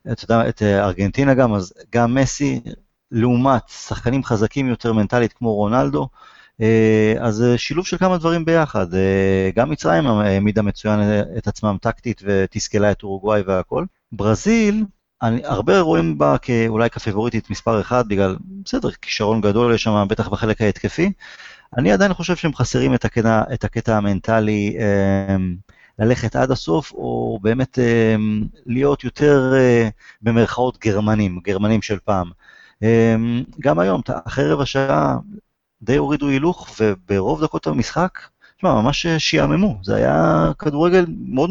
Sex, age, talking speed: male, 30-49, 125 wpm